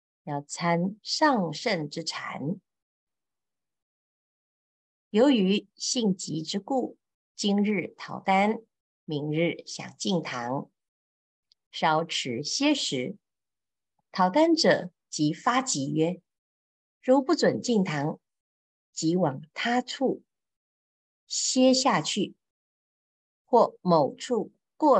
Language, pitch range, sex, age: Chinese, 155-230 Hz, female, 50-69